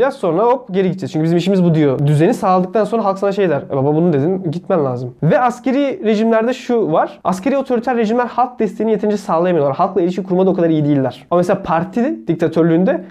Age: 20-39